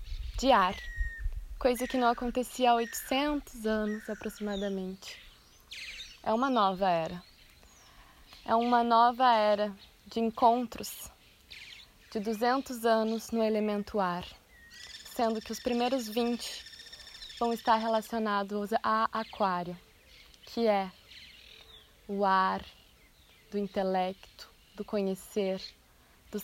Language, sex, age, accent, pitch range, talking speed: Portuguese, female, 20-39, Brazilian, 205-240 Hz, 100 wpm